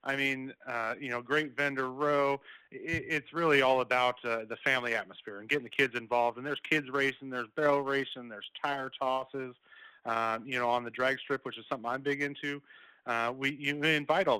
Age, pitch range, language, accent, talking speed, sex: 30-49, 120-140 Hz, English, American, 205 wpm, male